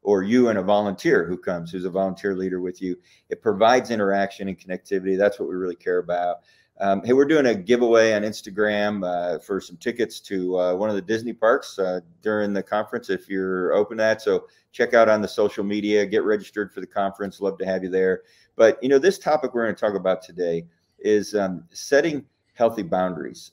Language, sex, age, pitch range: English, male, 40-59, 95-110 Hz